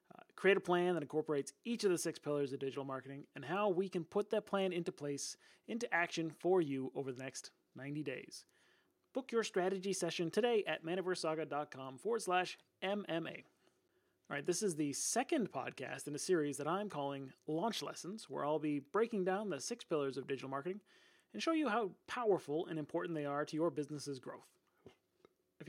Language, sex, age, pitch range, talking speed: English, male, 30-49, 145-200 Hz, 190 wpm